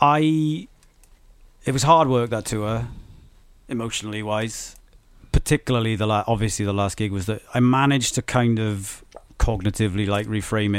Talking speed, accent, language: 150 wpm, British, English